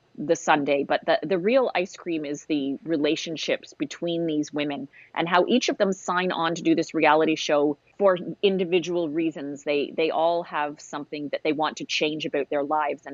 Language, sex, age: English, female, 30-49